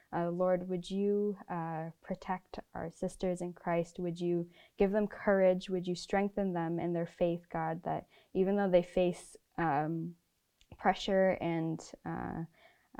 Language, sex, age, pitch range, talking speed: English, female, 10-29, 170-185 Hz, 150 wpm